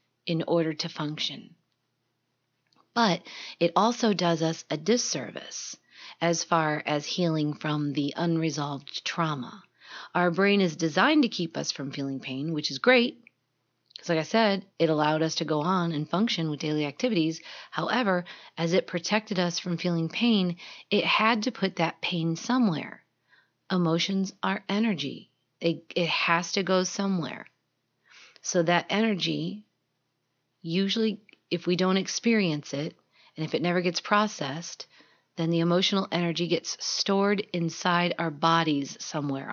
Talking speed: 145 wpm